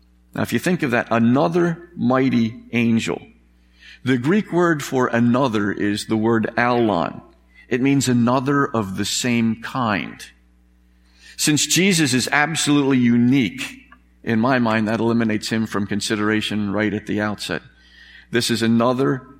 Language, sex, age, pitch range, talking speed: English, male, 50-69, 105-125 Hz, 140 wpm